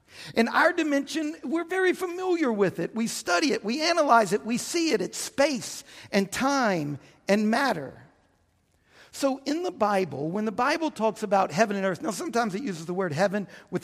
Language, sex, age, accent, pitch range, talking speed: English, male, 50-69, American, 185-265 Hz, 185 wpm